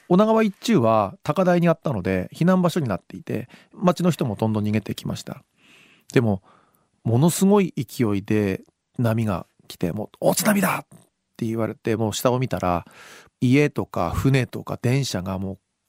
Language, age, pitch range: Japanese, 40-59, 110-175 Hz